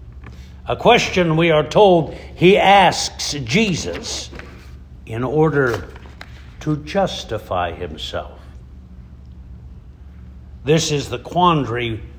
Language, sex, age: English, male, 60-79